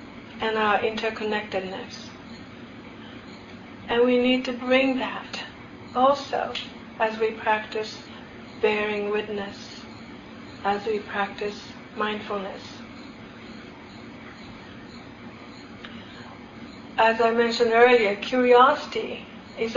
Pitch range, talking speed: 220-255 Hz, 75 wpm